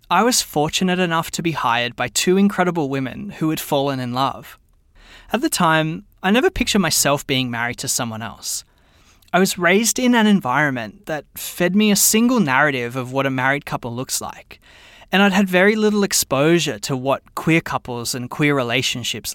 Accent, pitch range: Australian, 130-190 Hz